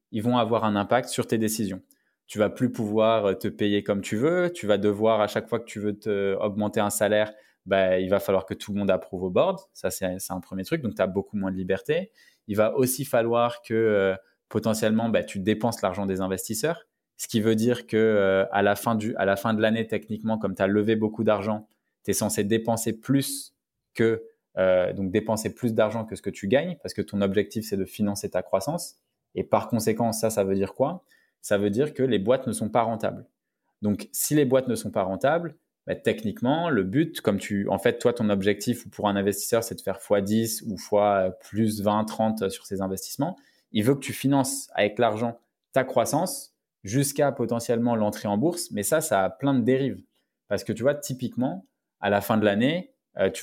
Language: French